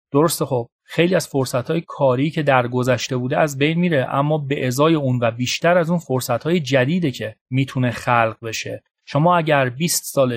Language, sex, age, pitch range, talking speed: Persian, male, 30-49, 130-165 Hz, 185 wpm